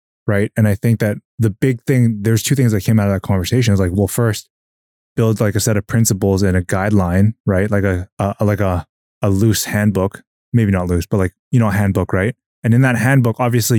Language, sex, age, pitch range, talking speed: English, male, 20-39, 100-120 Hz, 240 wpm